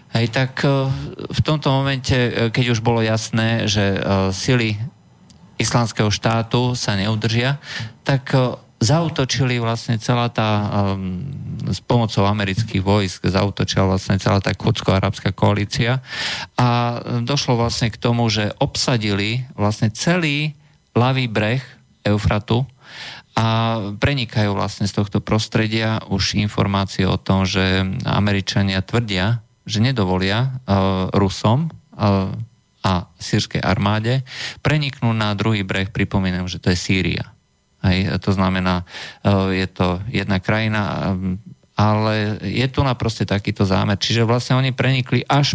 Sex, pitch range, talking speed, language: male, 100-125 Hz, 120 wpm, Slovak